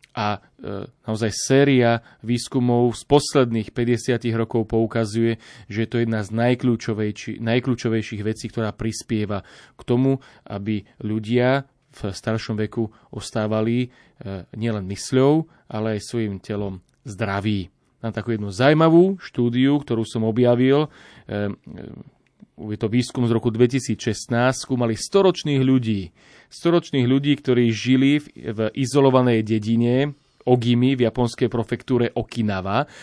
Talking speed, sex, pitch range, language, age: 120 wpm, male, 110-135 Hz, Slovak, 30-49